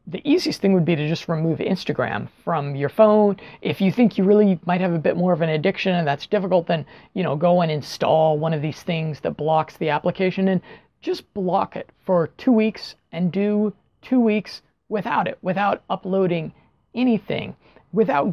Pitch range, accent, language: 175-220 Hz, American, English